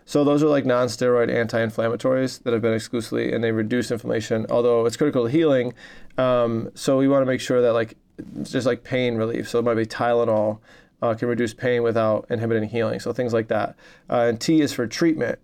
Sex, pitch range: male, 115-135 Hz